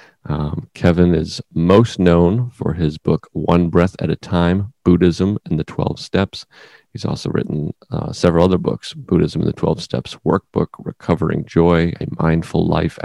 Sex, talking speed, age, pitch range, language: male, 165 wpm, 40-59, 80-95 Hz, English